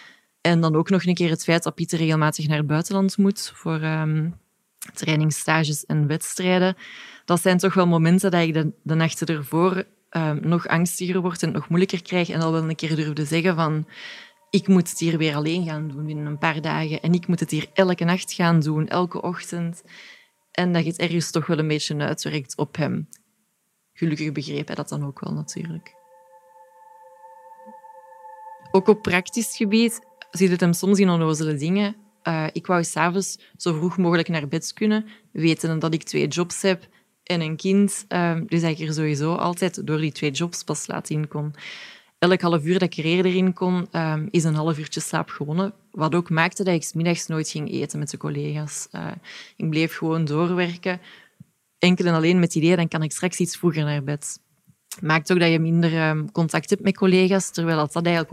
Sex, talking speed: female, 200 wpm